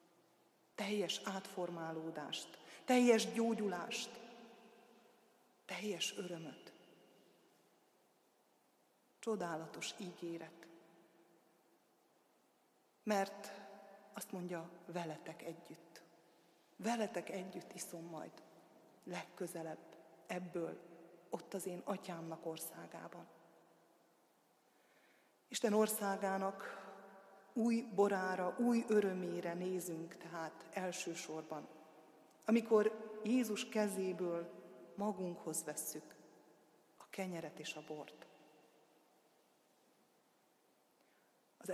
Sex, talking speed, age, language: female, 65 wpm, 30-49, Hungarian